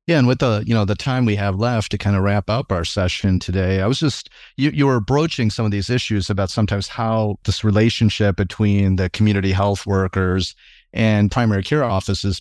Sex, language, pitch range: male, English, 95-120 Hz